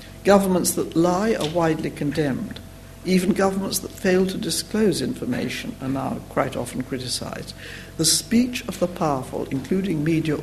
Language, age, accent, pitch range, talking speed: English, 60-79, British, 130-185 Hz, 145 wpm